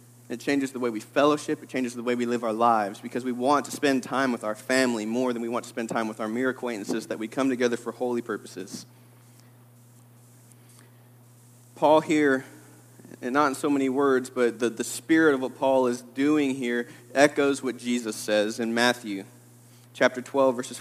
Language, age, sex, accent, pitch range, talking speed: English, 30-49, male, American, 120-150 Hz, 195 wpm